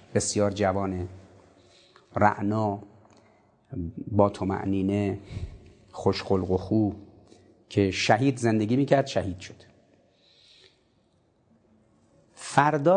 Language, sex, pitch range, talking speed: Persian, male, 100-130 Hz, 80 wpm